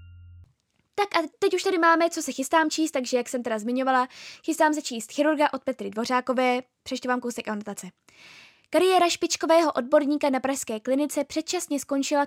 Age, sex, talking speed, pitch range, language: 10-29, female, 165 wpm, 235-300 Hz, Czech